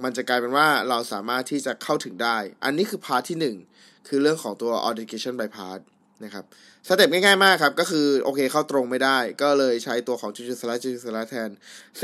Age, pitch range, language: 20-39, 120-150 Hz, Thai